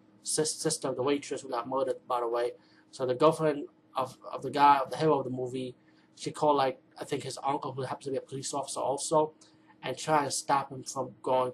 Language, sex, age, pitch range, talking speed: English, male, 30-49, 130-145 Hz, 230 wpm